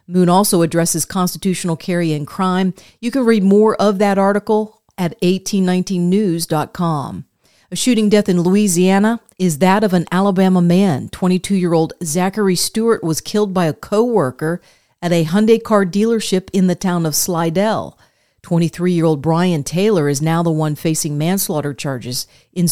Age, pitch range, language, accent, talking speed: 40-59, 160-195 Hz, English, American, 150 wpm